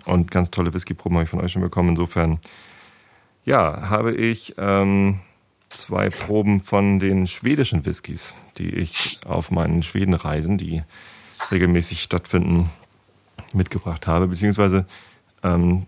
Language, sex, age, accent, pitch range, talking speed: German, male, 40-59, German, 85-100 Hz, 125 wpm